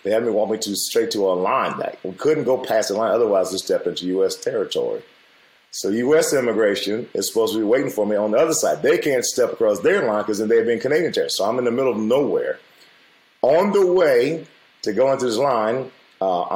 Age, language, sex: 30-49, English, male